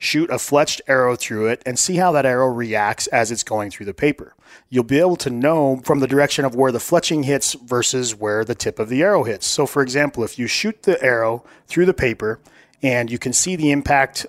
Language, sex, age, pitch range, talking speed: English, male, 30-49, 115-145 Hz, 235 wpm